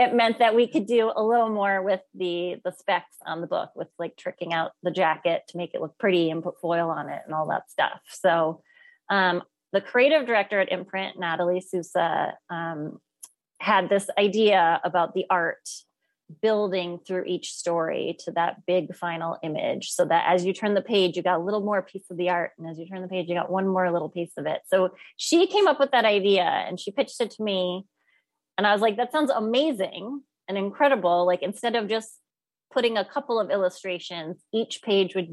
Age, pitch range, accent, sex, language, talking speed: 30-49, 175-225 Hz, American, female, English, 210 wpm